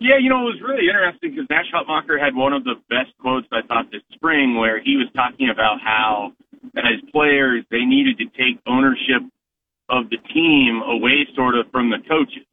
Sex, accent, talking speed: male, American, 200 wpm